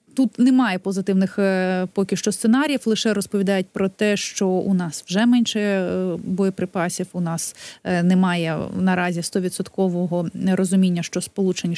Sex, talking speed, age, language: female, 120 wpm, 30-49, Ukrainian